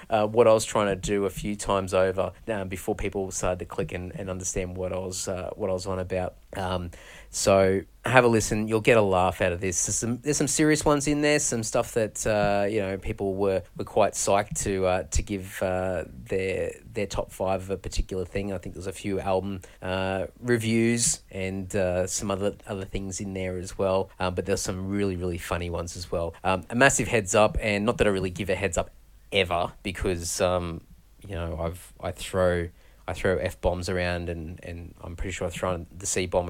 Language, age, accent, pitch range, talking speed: English, 30-49, Australian, 90-105 Hz, 225 wpm